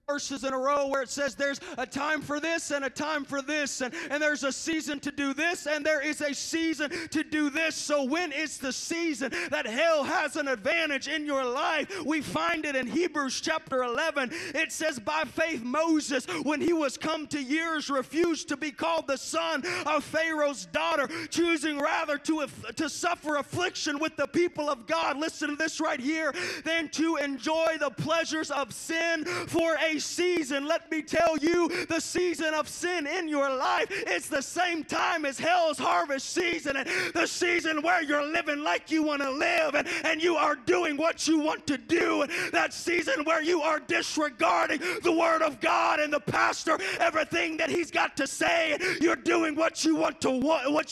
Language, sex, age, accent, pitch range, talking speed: English, male, 30-49, American, 290-330 Hz, 190 wpm